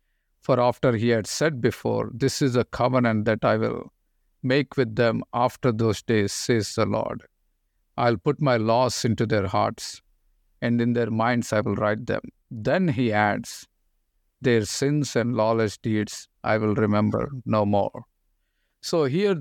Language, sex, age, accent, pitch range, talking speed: English, male, 50-69, Indian, 110-135 Hz, 160 wpm